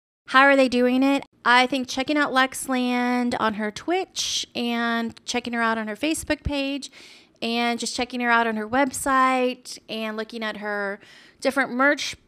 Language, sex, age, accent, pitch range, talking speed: English, female, 30-49, American, 220-265 Hz, 170 wpm